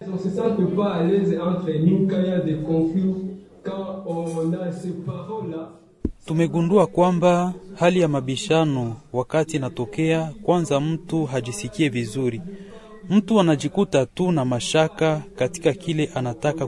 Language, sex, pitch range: French, male, 140-185 Hz